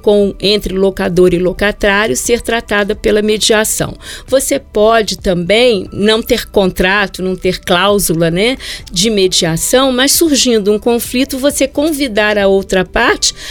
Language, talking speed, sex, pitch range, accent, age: Portuguese, 130 wpm, female, 185-230 Hz, Brazilian, 40-59